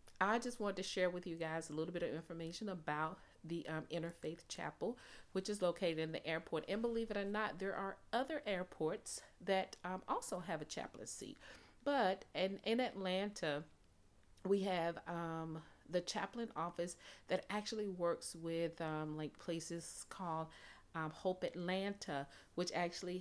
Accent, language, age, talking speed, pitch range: American, English, 40-59, 160 wpm, 160-195 Hz